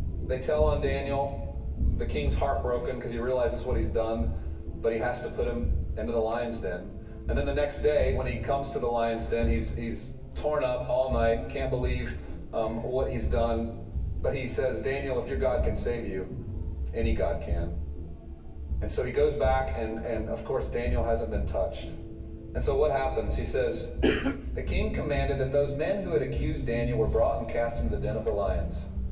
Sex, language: male, English